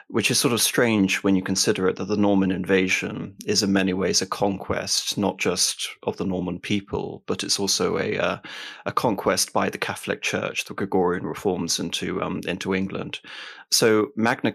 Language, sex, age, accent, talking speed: English, male, 30-49, British, 185 wpm